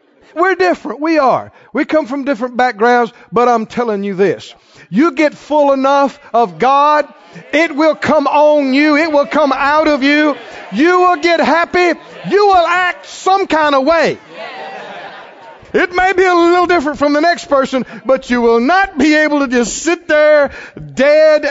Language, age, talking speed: English, 50-69, 175 wpm